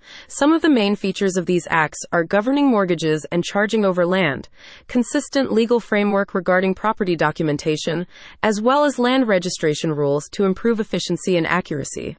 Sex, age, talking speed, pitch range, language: female, 30-49, 160 wpm, 170-235 Hz, English